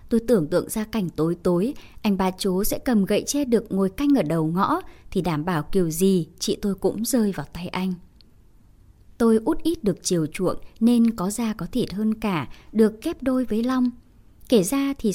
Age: 20-39